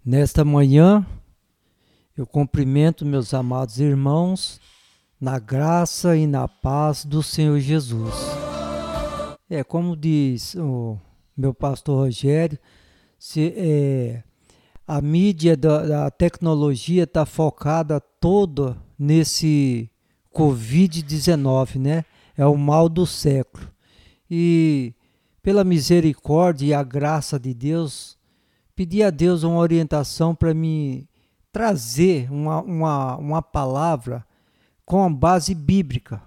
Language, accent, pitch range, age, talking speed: Portuguese, Brazilian, 135-170 Hz, 60-79, 100 wpm